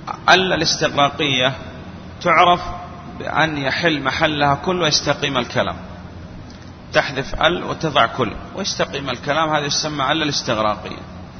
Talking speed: 100 wpm